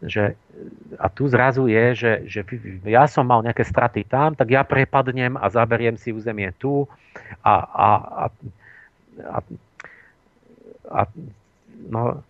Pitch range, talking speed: 105-125 Hz, 130 wpm